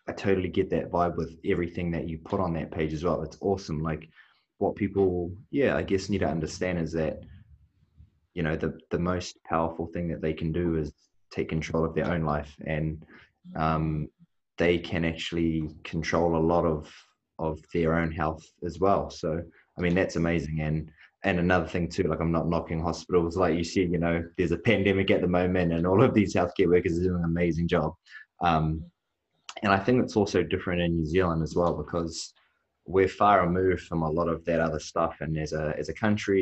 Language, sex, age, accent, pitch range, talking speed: English, male, 20-39, Australian, 80-90 Hz, 210 wpm